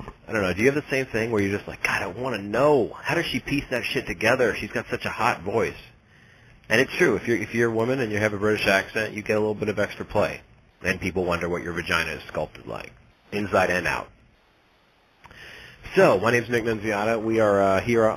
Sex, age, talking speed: male, 30-49, 250 wpm